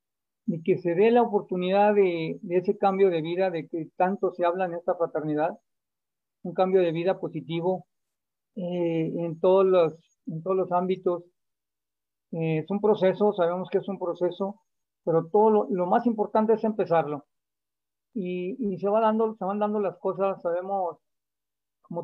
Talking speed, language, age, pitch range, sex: 170 wpm, Spanish, 40-59, 165-195 Hz, male